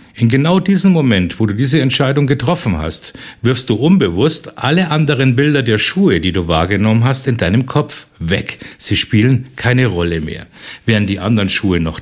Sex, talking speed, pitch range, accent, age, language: male, 180 wpm, 95-130 Hz, German, 50-69, German